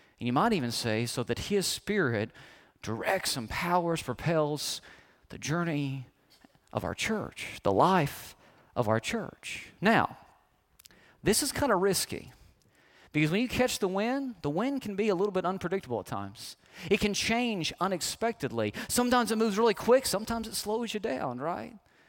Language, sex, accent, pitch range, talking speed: English, male, American, 175-250 Hz, 165 wpm